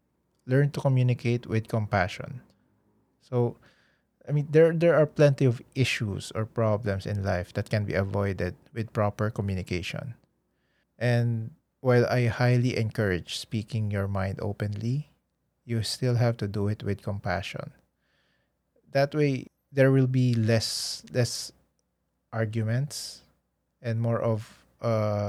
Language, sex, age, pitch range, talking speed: Filipino, male, 20-39, 100-125 Hz, 130 wpm